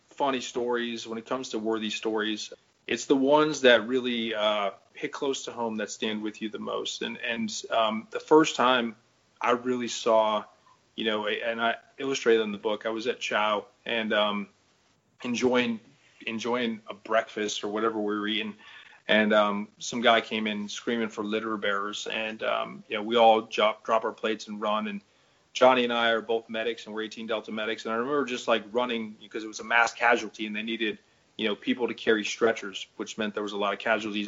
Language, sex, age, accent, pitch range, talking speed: English, male, 30-49, American, 110-120 Hz, 210 wpm